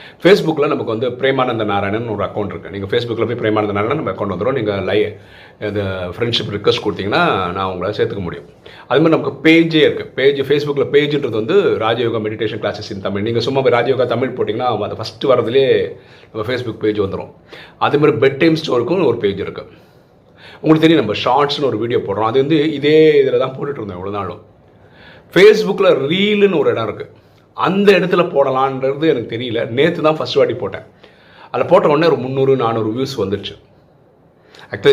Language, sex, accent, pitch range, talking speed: Tamil, male, native, 110-160 Hz, 165 wpm